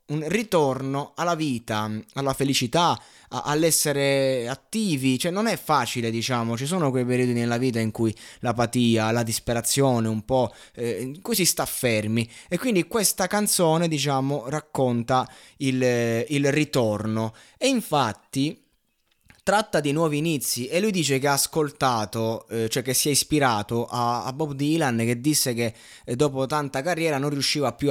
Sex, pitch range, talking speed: male, 120-165 Hz, 150 wpm